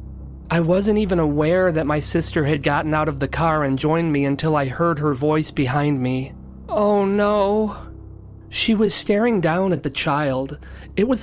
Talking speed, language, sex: 180 wpm, English, male